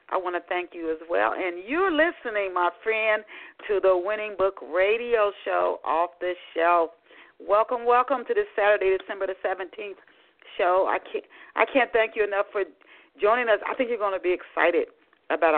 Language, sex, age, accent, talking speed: English, female, 40-59, American, 185 wpm